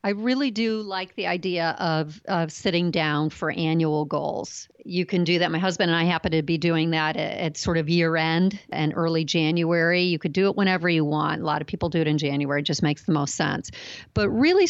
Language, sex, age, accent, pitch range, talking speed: English, female, 50-69, American, 170-215 Hz, 235 wpm